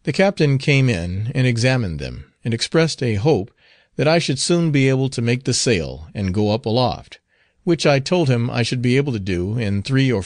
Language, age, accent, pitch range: English, 40-59, American, 95-140 Hz